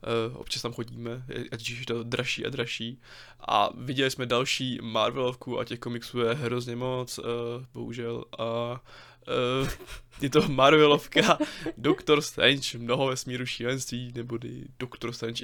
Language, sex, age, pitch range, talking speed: Czech, male, 20-39, 120-130 Hz, 145 wpm